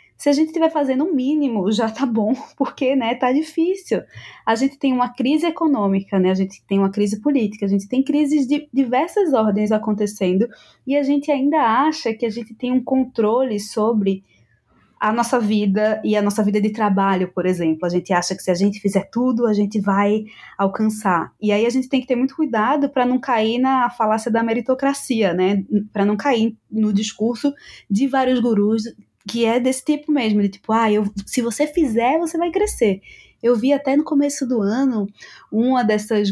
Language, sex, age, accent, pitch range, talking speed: Portuguese, female, 20-39, Brazilian, 210-275 Hz, 200 wpm